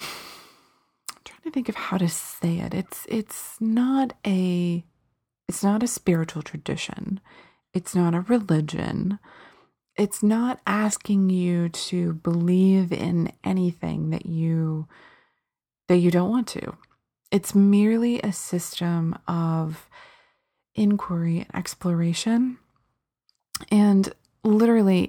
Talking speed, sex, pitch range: 110 wpm, female, 165-200 Hz